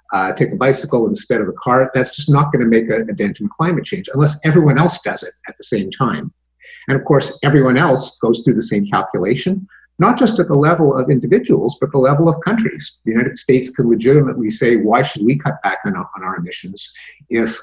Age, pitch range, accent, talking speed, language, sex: 50-69, 110-145 Hz, American, 225 wpm, English, male